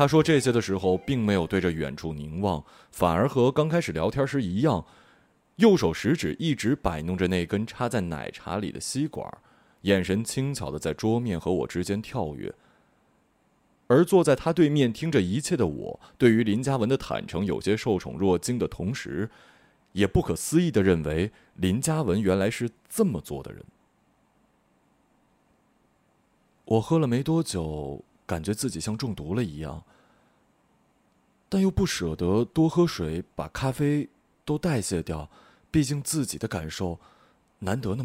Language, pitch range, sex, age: Chinese, 90-135 Hz, male, 30-49